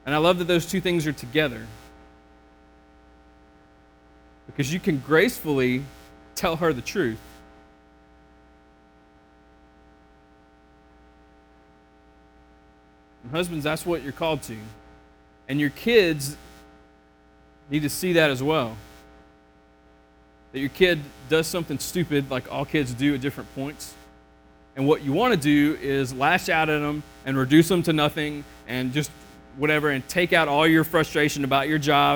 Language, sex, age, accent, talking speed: English, male, 30-49, American, 140 wpm